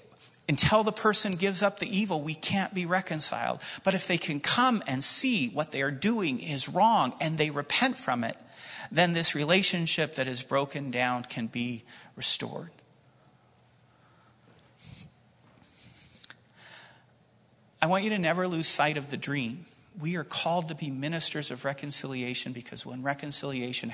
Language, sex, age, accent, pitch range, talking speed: English, male, 40-59, American, 125-165 Hz, 150 wpm